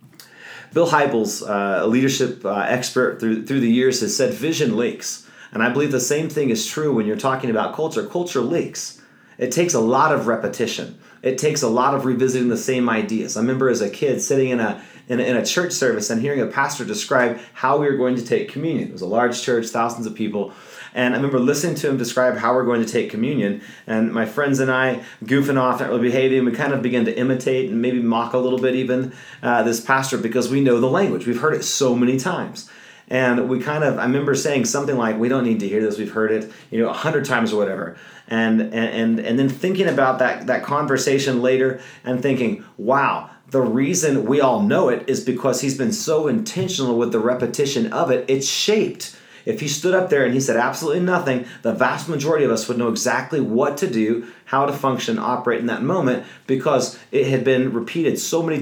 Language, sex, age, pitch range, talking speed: English, male, 30-49, 120-140 Hz, 230 wpm